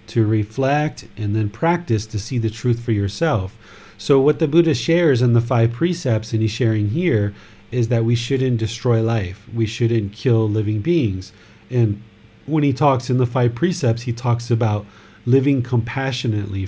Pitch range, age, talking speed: 105-125 Hz, 30-49, 175 wpm